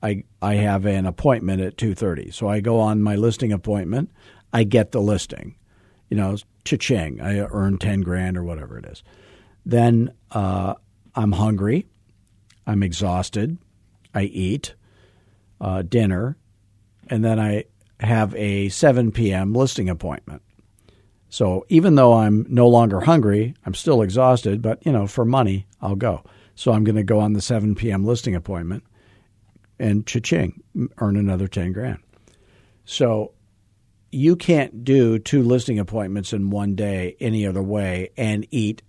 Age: 50-69